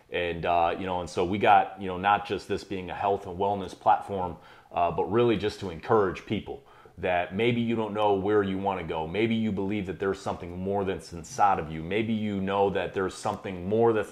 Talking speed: 230 wpm